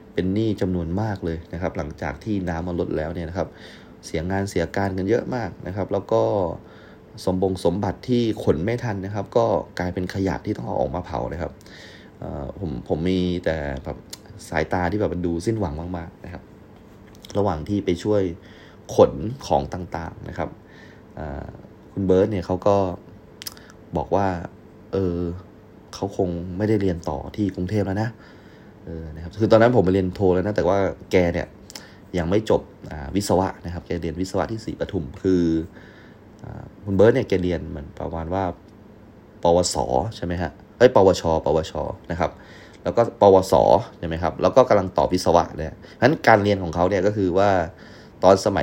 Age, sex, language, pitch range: 30-49, male, Thai, 85-105 Hz